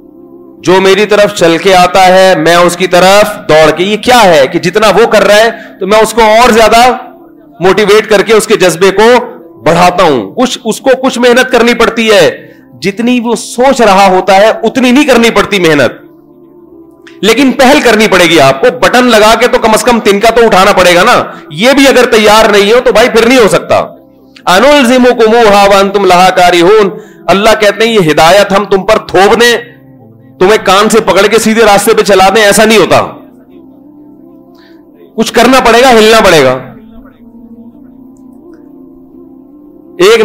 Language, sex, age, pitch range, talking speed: Urdu, male, 40-59, 185-260 Hz, 180 wpm